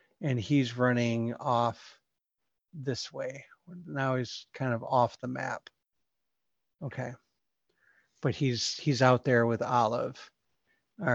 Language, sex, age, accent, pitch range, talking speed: English, male, 50-69, American, 120-160 Hz, 120 wpm